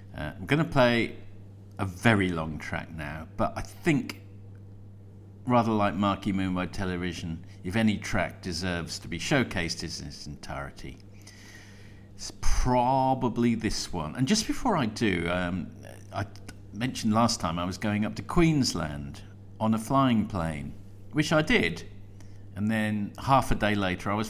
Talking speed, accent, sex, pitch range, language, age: 160 wpm, British, male, 90-110 Hz, English, 50-69